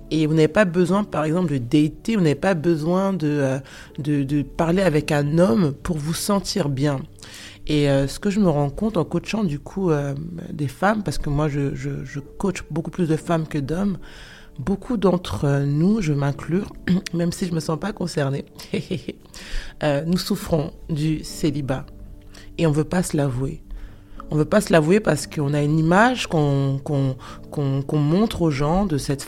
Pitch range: 145-185 Hz